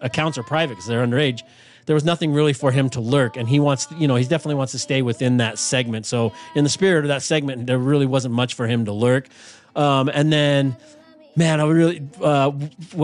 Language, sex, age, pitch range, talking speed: English, male, 30-49, 115-145 Hz, 225 wpm